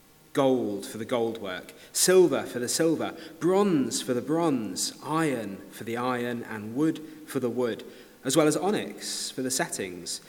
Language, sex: English, male